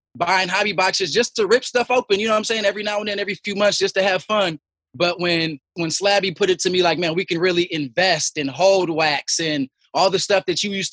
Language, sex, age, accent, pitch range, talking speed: English, male, 20-39, American, 180-200 Hz, 265 wpm